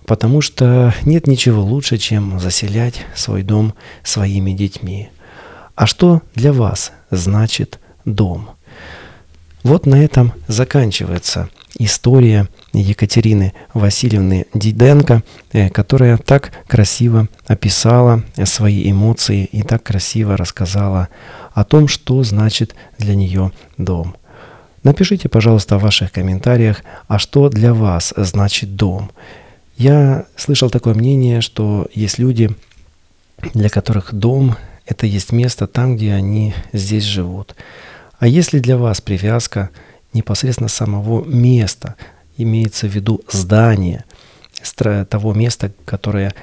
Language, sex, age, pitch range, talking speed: Russian, male, 40-59, 95-120 Hz, 110 wpm